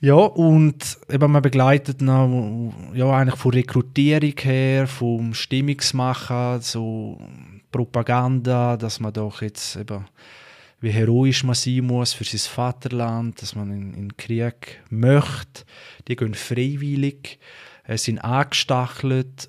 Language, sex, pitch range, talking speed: German, male, 115-135 Hz, 125 wpm